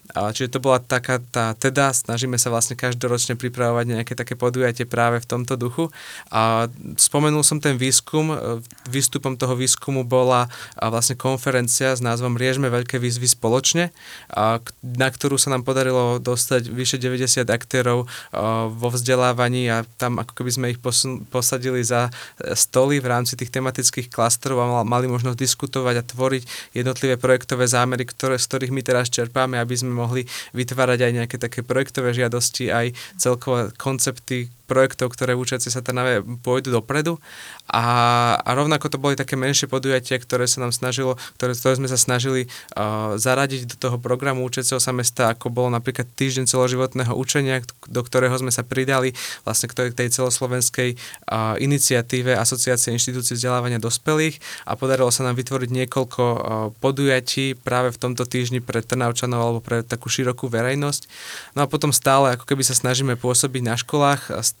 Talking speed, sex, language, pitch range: 160 wpm, male, Slovak, 120-130 Hz